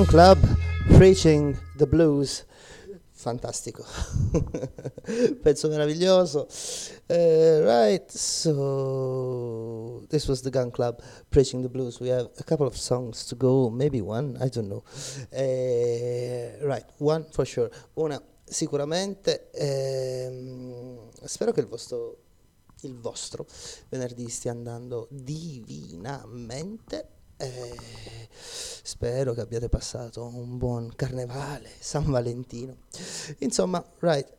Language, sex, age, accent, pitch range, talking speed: Italian, male, 30-49, native, 120-145 Hz, 100 wpm